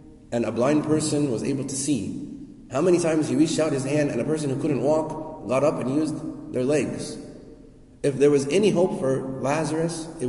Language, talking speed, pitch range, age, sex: English, 210 wpm, 120-155 Hz, 30-49, male